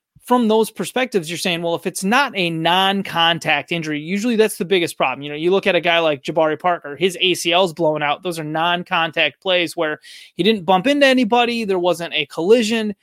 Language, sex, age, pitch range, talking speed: English, male, 30-49, 150-190 Hz, 205 wpm